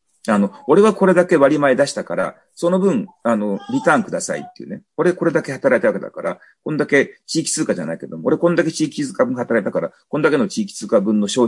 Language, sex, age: Japanese, male, 40-59